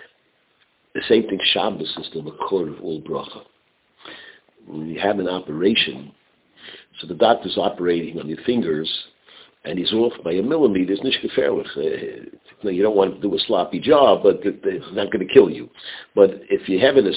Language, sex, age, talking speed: English, male, 60-79, 180 wpm